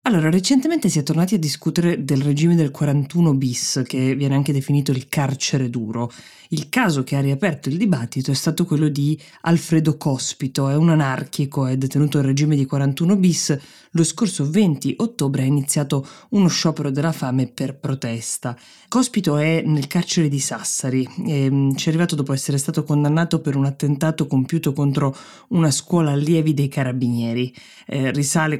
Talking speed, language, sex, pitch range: 165 wpm, Italian, female, 135-165 Hz